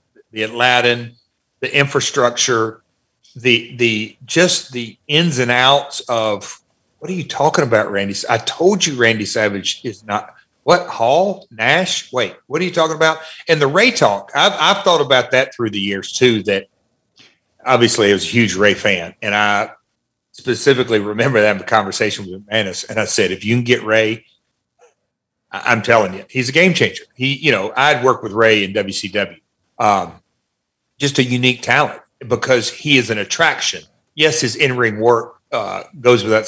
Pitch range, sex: 105-130 Hz, male